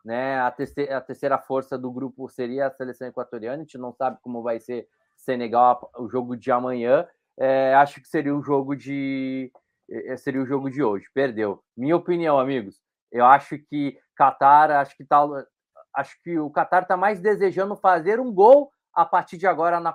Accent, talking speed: Brazilian, 185 wpm